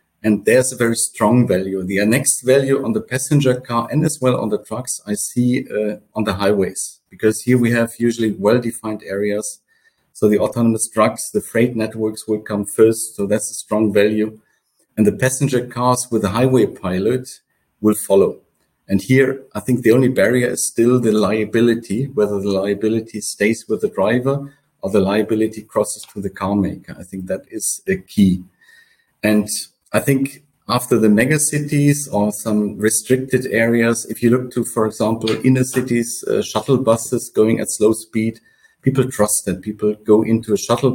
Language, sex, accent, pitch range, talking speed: English, male, German, 105-130 Hz, 180 wpm